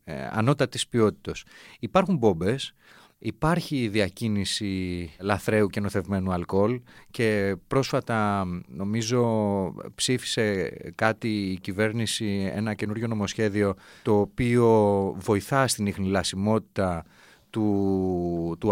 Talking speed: 95 wpm